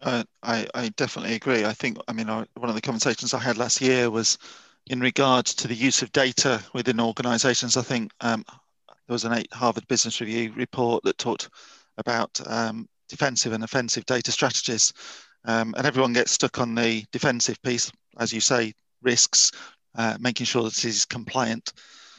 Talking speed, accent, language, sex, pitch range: 185 wpm, British, English, male, 115-130 Hz